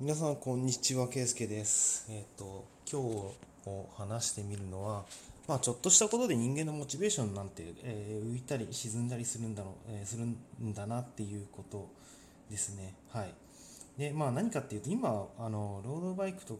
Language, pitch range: Japanese, 100-130 Hz